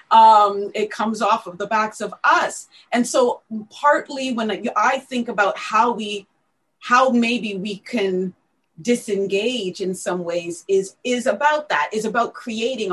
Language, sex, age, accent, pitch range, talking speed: English, female, 30-49, American, 190-240 Hz, 155 wpm